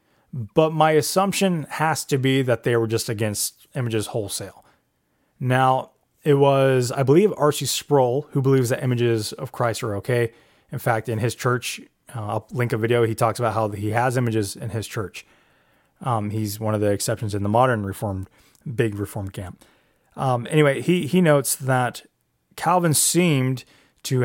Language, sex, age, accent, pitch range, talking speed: English, male, 20-39, American, 115-140 Hz, 175 wpm